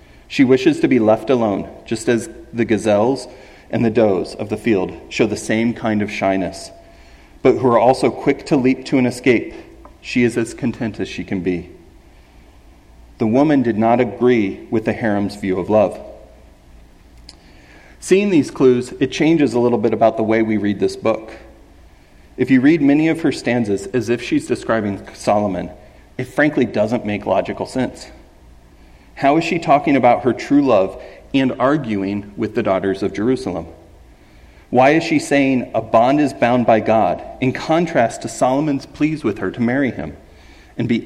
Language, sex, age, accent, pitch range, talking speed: English, male, 40-59, American, 100-130 Hz, 175 wpm